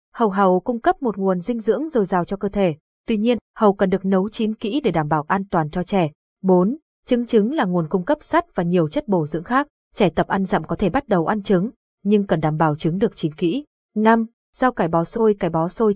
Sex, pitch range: female, 180-235 Hz